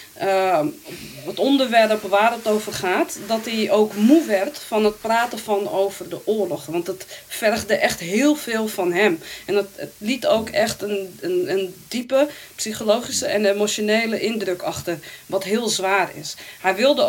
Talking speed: 165 wpm